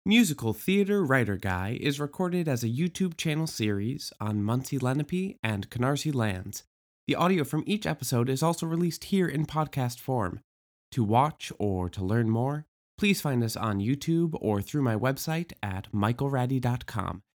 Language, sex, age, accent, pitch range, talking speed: English, male, 20-39, American, 115-185 Hz, 155 wpm